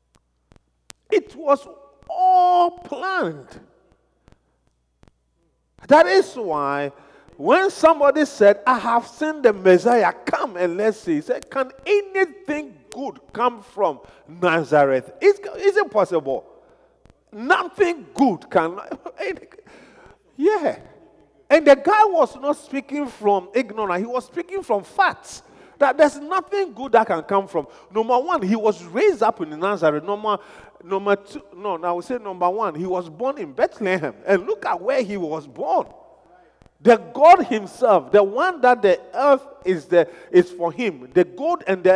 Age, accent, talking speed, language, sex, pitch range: 50-69, Nigerian, 145 wpm, English, male, 185-310 Hz